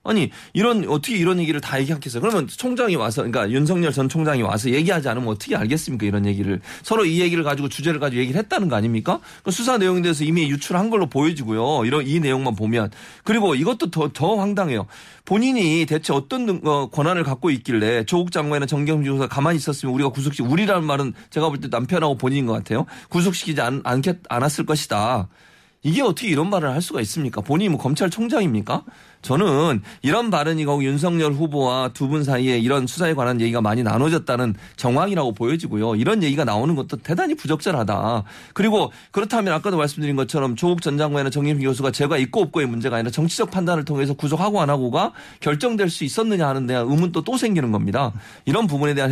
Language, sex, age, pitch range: Korean, male, 30-49, 125-170 Hz